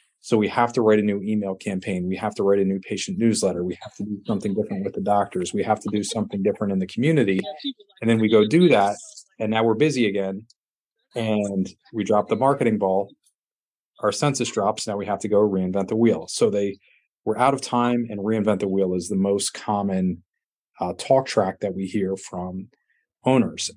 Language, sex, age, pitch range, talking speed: English, male, 30-49, 100-115 Hz, 215 wpm